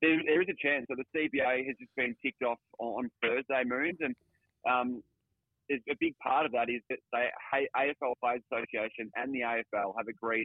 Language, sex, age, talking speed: English, male, 30-49, 190 wpm